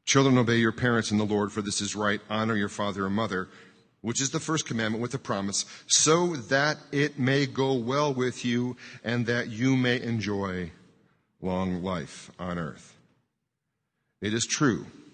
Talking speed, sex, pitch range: 175 wpm, male, 105-145 Hz